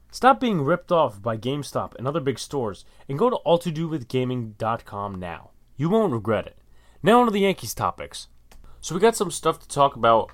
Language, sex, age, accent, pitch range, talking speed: English, male, 20-39, American, 105-130 Hz, 190 wpm